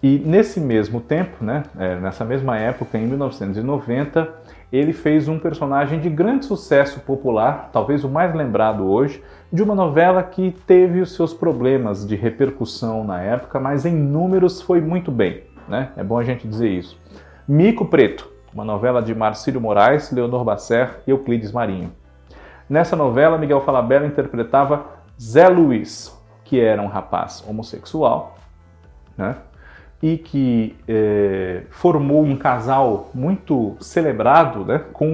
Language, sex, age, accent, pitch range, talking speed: Portuguese, male, 40-59, Brazilian, 110-150 Hz, 140 wpm